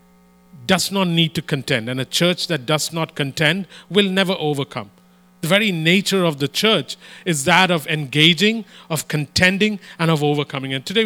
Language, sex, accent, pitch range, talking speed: English, male, Indian, 150-205 Hz, 175 wpm